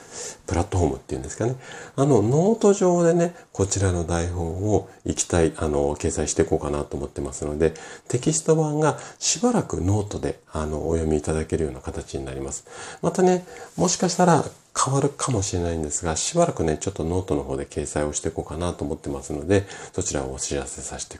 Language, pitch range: Japanese, 75-100 Hz